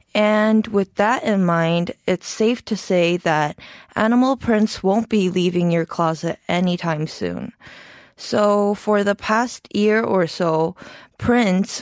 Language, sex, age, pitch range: Korean, female, 20-39, 180-220 Hz